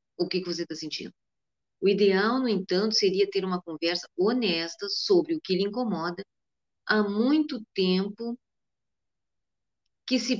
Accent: Brazilian